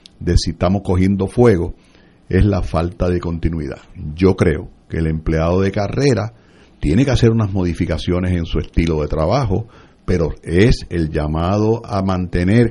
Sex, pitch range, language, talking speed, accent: male, 85-115 Hz, Spanish, 155 wpm, Venezuelan